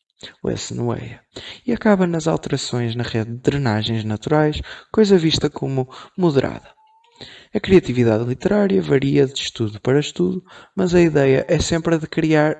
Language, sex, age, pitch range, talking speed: Portuguese, male, 20-39, 120-170 Hz, 140 wpm